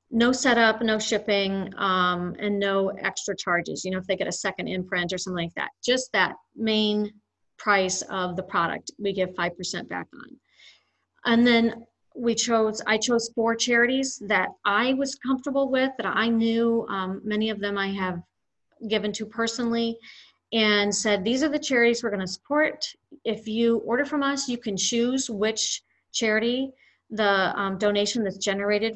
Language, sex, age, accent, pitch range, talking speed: English, female, 40-59, American, 195-235 Hz, 175 wpm